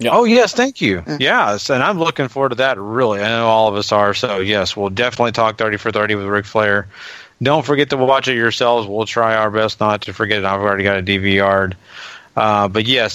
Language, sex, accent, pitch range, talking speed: English, male, American, 105-135 Hz, 235 wpm